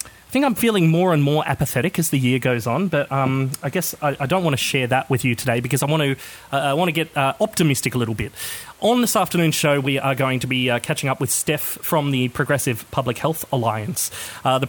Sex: male